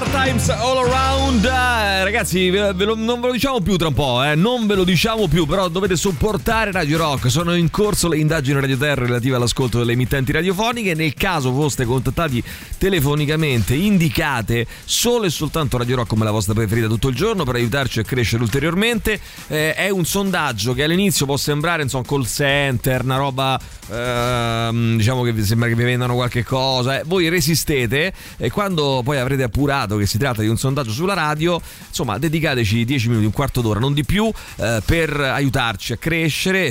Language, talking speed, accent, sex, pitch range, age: Italian, 190 wpm, native, male, 115-160 Hz, 30-49